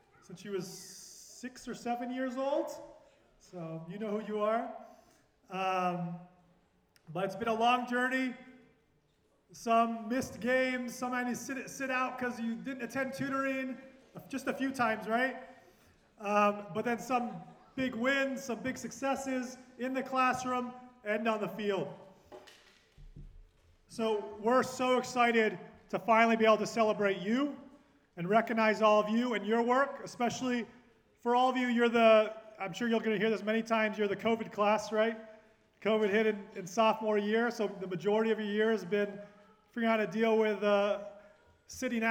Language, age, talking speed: English, 30-49, 165 wpm